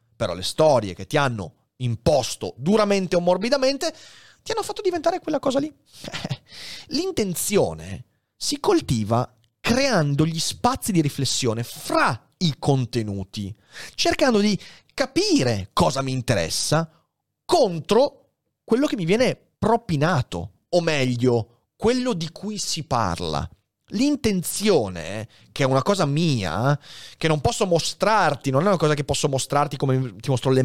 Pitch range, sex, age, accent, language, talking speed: 120-190 Hz, male, 30-49, native, Italian, 135 wpm